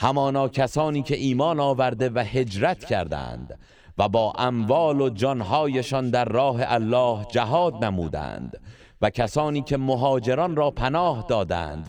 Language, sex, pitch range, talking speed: Persian, male, 95-130 Hz, 125 wpm